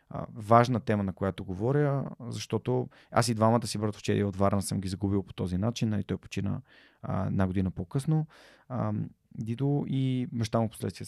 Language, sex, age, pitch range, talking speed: Bulgarian, male, 30-49, 105-130 Hz, 180 wpm